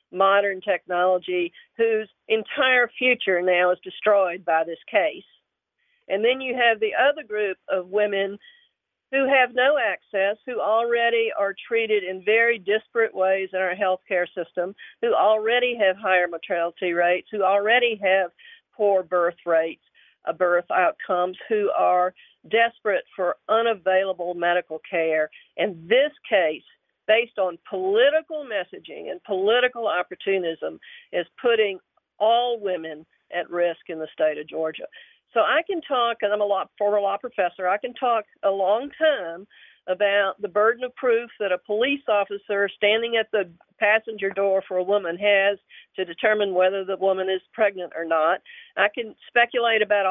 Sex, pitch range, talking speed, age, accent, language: female, 185-240 Hz, 150 wpm, 50-69, American, English